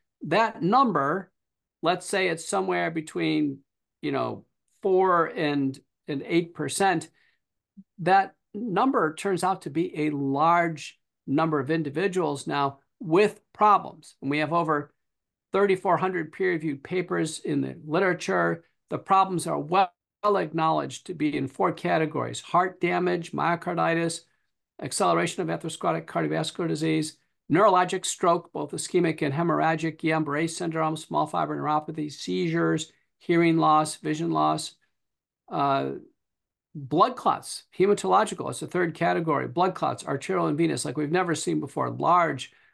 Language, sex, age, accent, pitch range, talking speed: English, male, 50-69, American, 155-180 Hz, 130 wpm